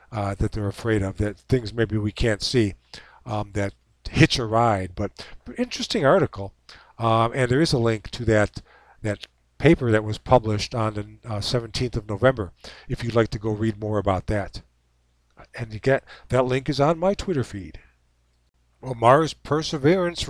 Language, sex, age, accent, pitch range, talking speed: English, male, 50-69, American, 100-125 Hz, 180 wpm